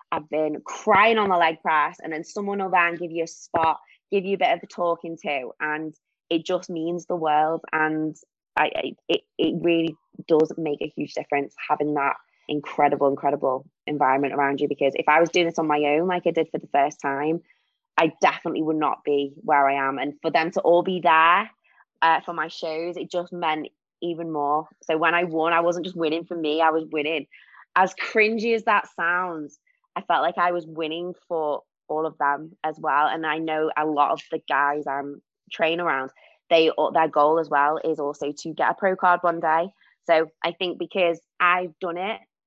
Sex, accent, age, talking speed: female, British, 20-39, 215 wpm